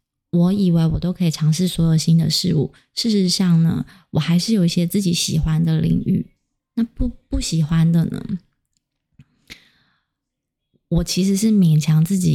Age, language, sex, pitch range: 20-39, Chinese, female, 165-190 Hz